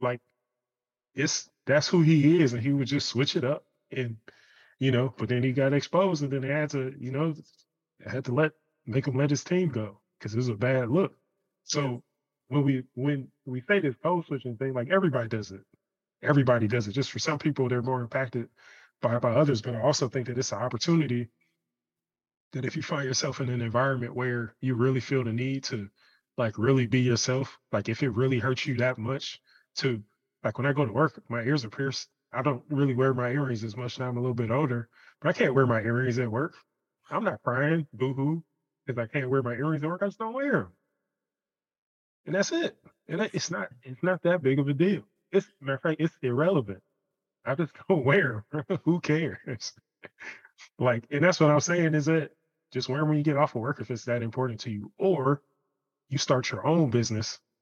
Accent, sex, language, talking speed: American, male, English, 220 wpm